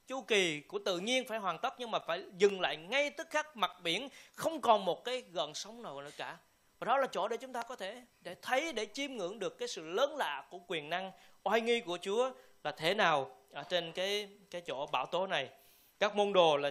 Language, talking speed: Vietnamese, 245 wpm